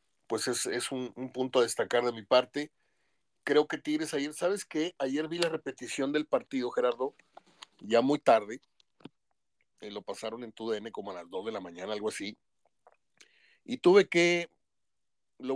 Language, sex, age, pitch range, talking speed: Spanish, male, 40-59, 125-155 Hz, 175 wpm